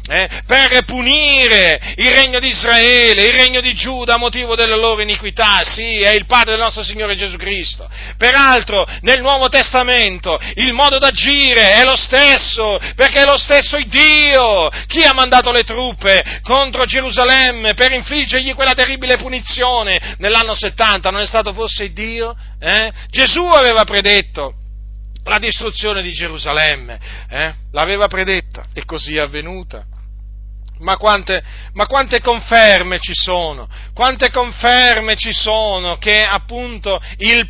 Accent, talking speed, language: native, 145 wpm, Italian